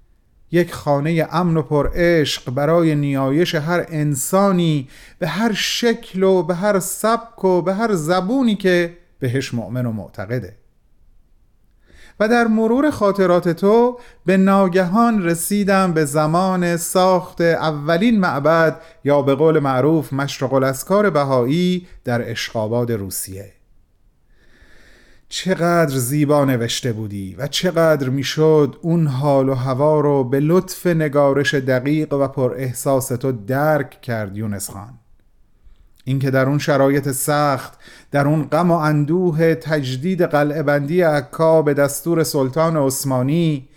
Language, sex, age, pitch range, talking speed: Persian, male, 30-49, 135-180 Hz, 125 wpm